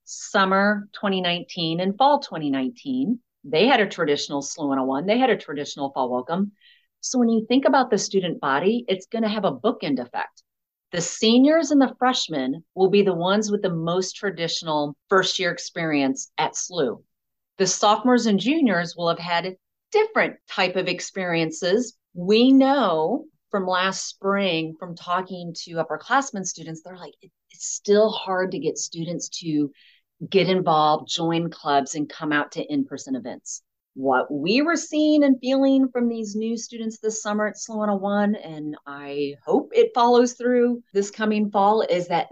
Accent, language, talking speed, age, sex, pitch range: American, English, 165 wpm, 40-59, female, 165-230 Hz